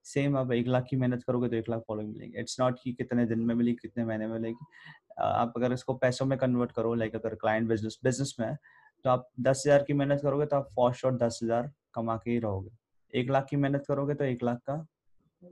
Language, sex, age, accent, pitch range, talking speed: Hindi, male, 20-39, native, 115-145 Hz, 95 wpm